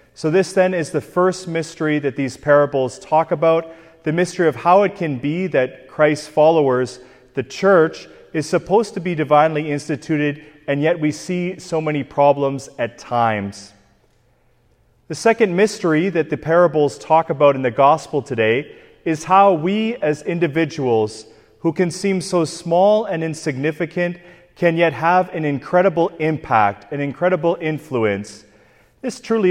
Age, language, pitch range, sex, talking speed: 30-49, English, 130-170 Hz, male, 150 wpm